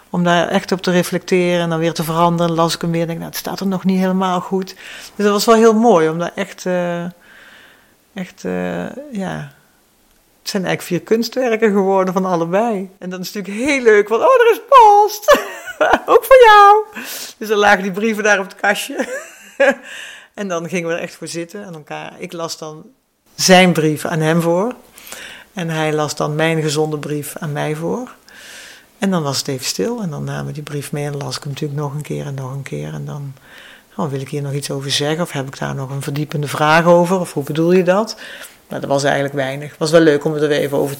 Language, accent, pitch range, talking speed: Dutch, Dutch, 155-205 Hz, 235 wpm